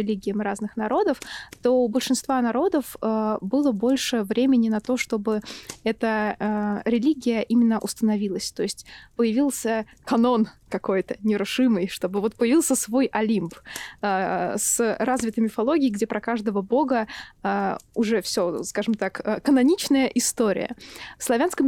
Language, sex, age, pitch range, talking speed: Russian, female, 20-39, 210-255 Hz, 120 wpm